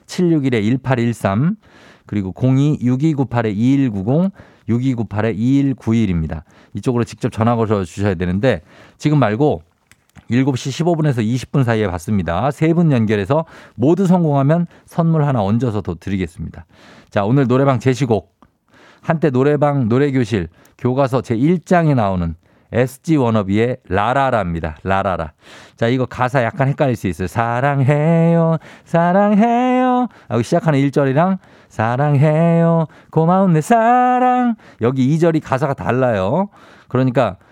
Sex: male